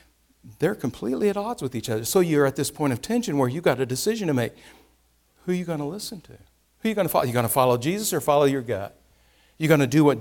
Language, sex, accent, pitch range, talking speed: English, male, American, 135-190 Hz, 295 wpm